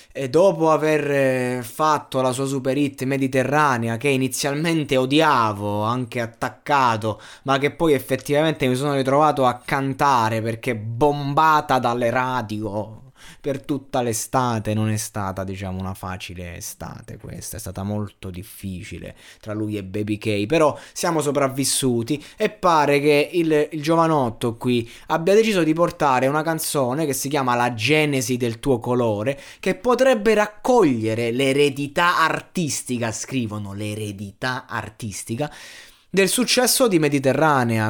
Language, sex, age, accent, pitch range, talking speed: Italian, male, 20-39, native, 115-150 Hz, 130 wpm